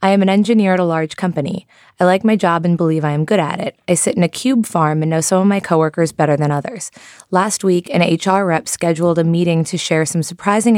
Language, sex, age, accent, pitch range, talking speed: English, female, 20-39, American, 165-205 Hz, 255 wpm